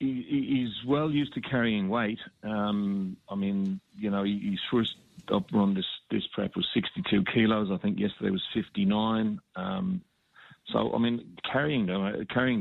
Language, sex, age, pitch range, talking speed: English, male, 50-69, 100-140 Hz, 150 wpm